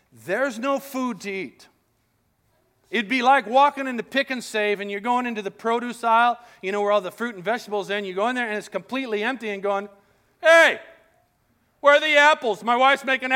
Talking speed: 215 wpm